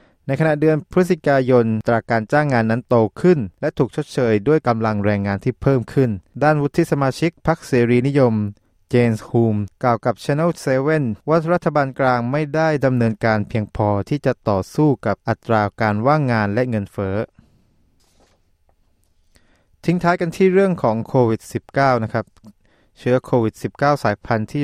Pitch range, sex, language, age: 105-135 Hz, male, Thai, 20-39